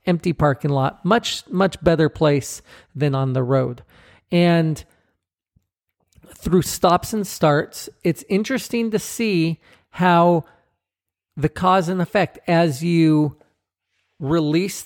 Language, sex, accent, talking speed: English, male, American, 115 wpm